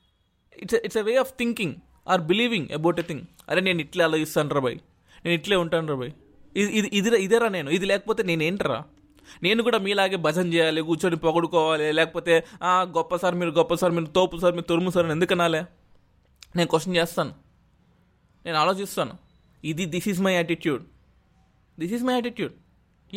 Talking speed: 190 wpm